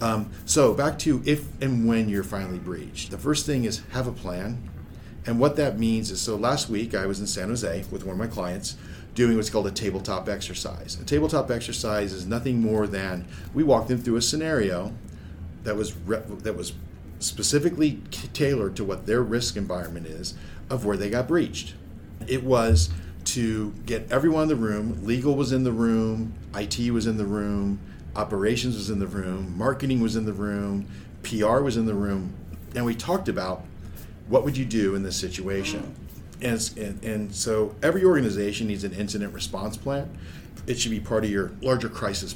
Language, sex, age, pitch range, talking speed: English, male, 40-59, 95-115 Hz, 190 wpm